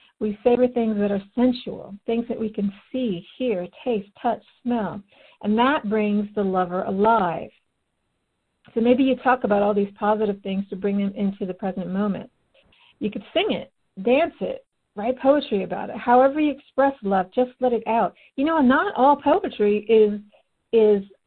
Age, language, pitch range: 50-69, English, 195-245 Hz